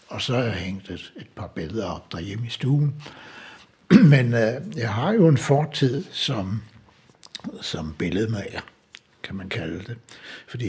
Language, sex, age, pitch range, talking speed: Danish, male, 60-79, 100-135 Hz, 165 wpm